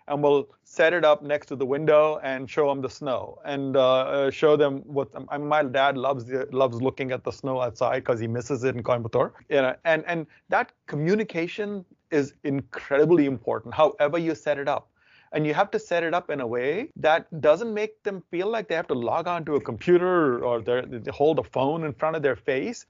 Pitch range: 130-155 Hz